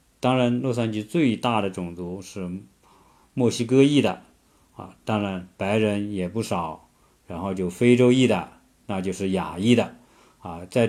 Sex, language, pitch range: male, Chinese, 95-120 Hz